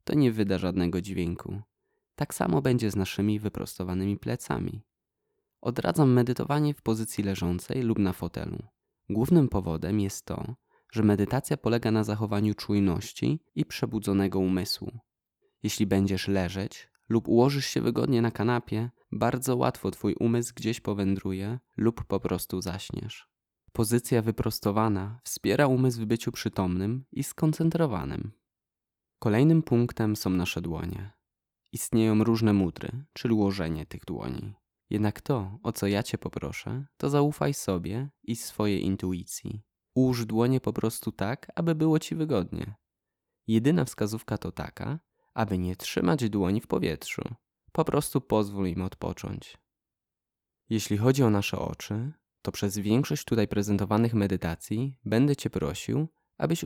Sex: male